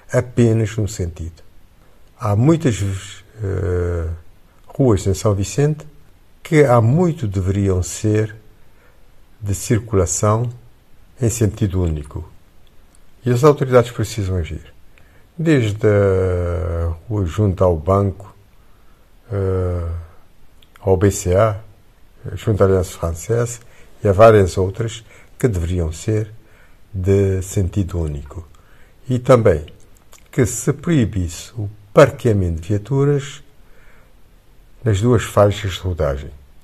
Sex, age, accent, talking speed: male, 50-69, Brazilian, 100 wpm